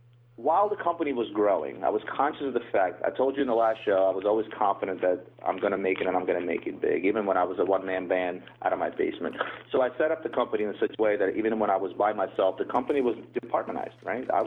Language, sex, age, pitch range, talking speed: English, male, 30-49, 105-130 Hz, 275 wpm